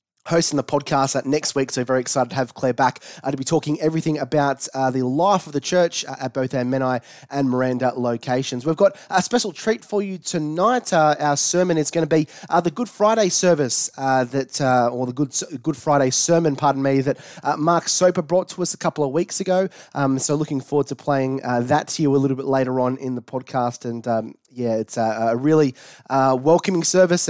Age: 20-39